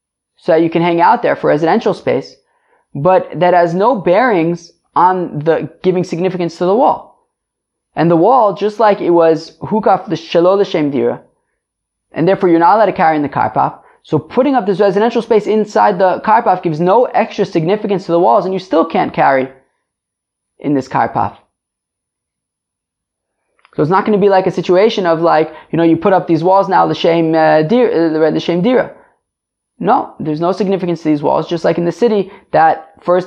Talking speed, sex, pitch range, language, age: 190 wpm, male, 155-195 Hz, English, 20-39